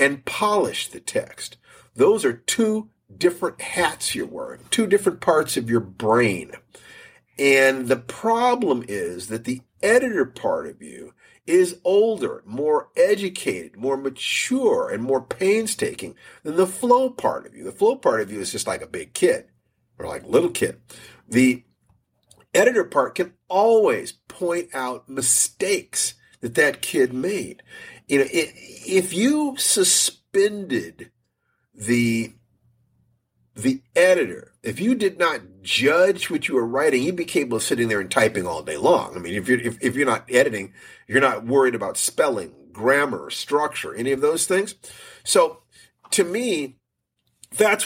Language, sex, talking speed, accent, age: English, male, 155 wpm, American, 50-69